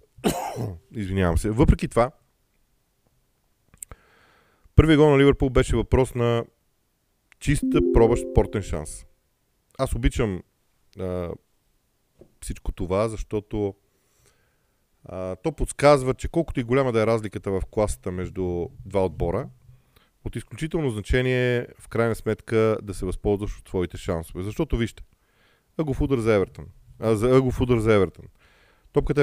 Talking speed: 115 wpm